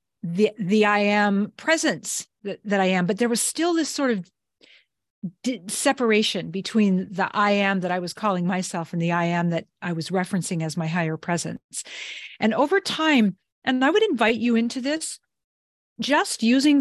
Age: 40-59